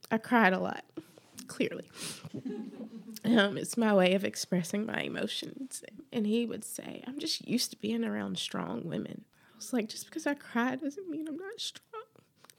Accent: American